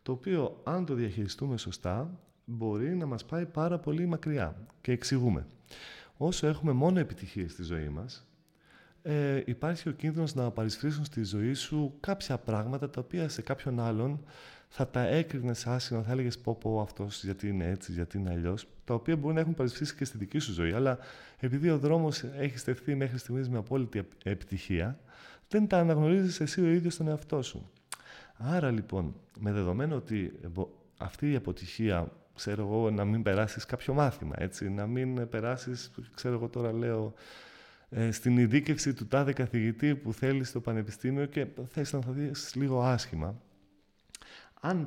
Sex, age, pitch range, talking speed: male, 30-49, 105-145 Hz, 165 wpm